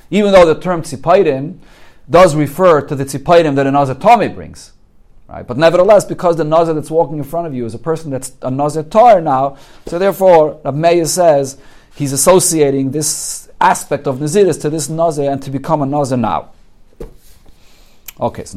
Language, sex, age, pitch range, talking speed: English, male, 40-59, 120-160 Hz, 180 wpm